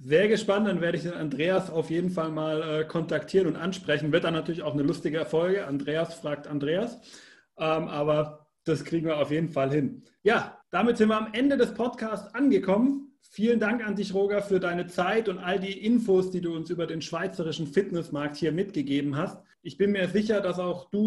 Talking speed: 200 wpm